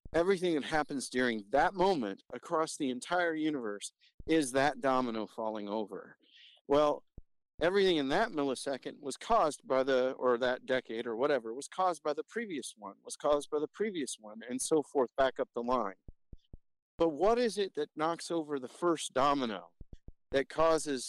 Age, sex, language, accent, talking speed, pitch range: 50-69, male, English, American, 170 wpm, 130-165 Hz